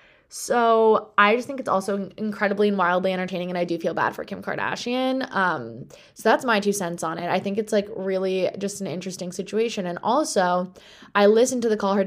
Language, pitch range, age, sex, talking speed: English, 185-220 Hz, 20-39, female, 215 wpm